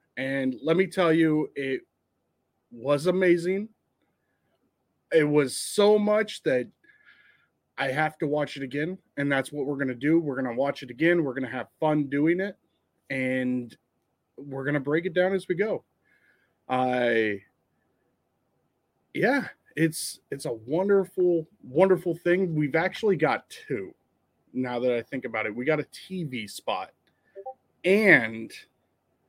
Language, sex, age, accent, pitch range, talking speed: English, male, 30-49, American, 120-170 Hz, 150 wpm